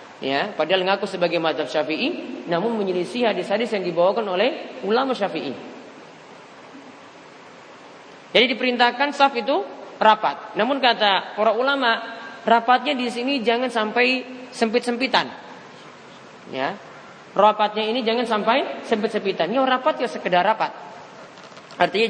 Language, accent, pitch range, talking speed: Indonesian, native, 190-250 Hz, 110 wpm